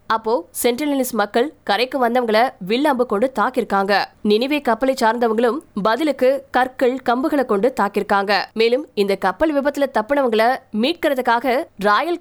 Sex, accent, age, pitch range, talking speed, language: female, native, 20-39, 220-275 Hz, 105 wpm, Tamil